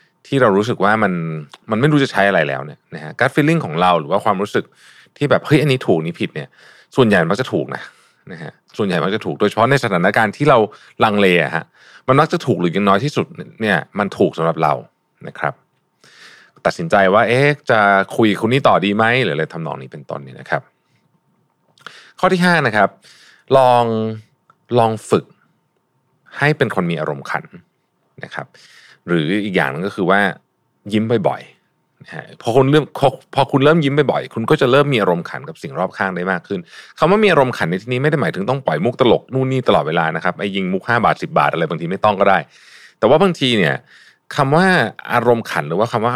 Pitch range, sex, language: 95-140 Hz, male, Thai